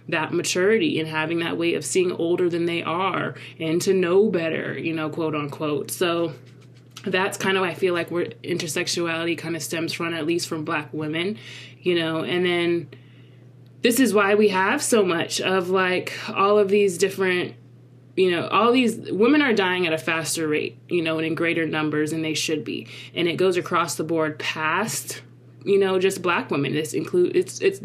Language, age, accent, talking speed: English, 20-39, American, 195 wpm